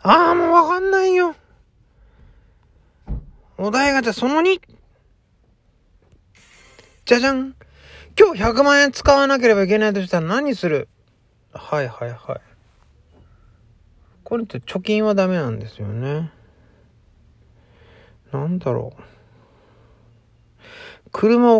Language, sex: Japanese, male